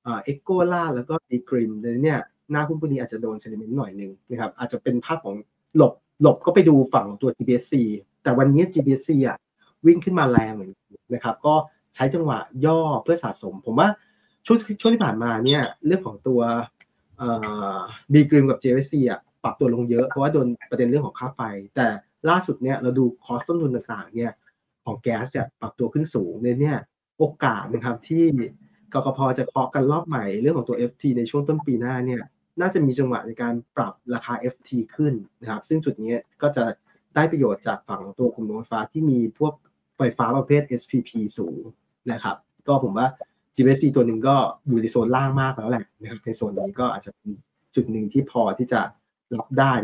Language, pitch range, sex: Thai, 115-150 Hz, male